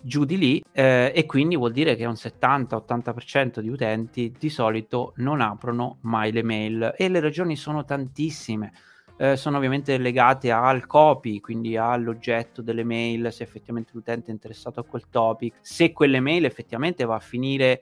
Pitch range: 115-140 Hz